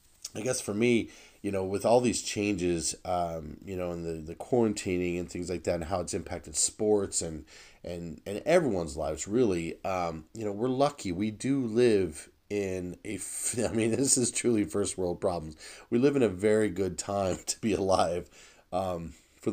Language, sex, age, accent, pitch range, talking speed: English, male, 30-49, American, 85-105 Hz, 185 wpm